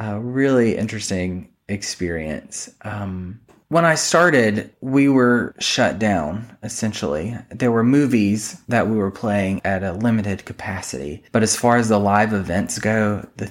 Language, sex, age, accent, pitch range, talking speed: English, male, 20-39, American, 100-120 Hz, 145 wpm